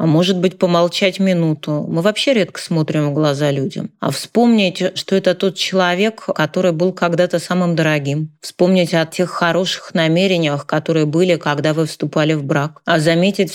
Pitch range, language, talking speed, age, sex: 160-185 Hz, Russian, 165 wpm, 20-39, female